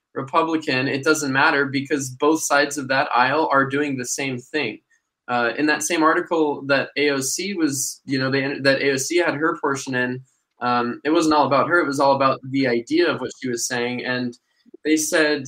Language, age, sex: English, 20-39, male